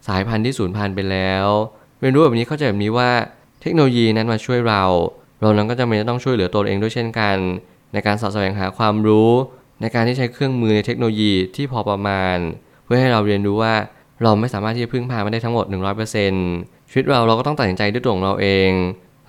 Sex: male